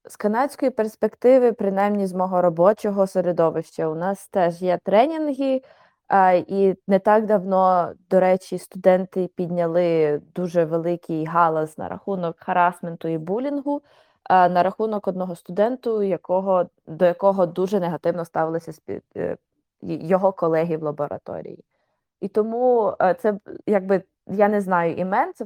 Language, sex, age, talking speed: Ukrainian, female, 20-39, 125 wpm